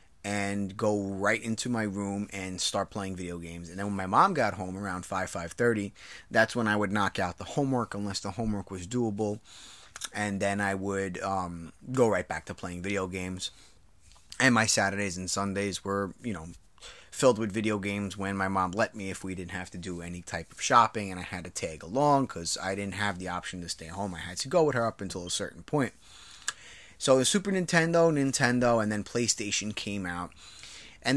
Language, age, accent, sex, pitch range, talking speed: English, 30-49, American, male, 95-120 Hz, 210 wpm